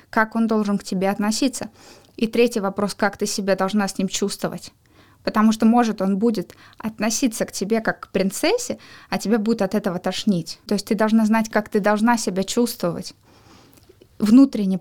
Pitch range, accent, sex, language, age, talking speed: 195-235 Hz, native, female, Russian, 20-39, 180 wpm